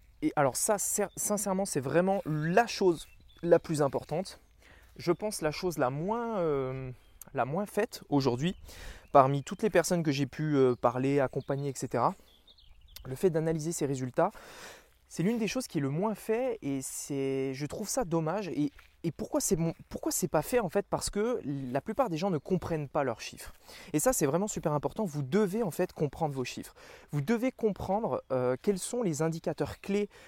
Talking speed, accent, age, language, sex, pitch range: 185 wpm, French, 20-39, French, male, 135-190 Hz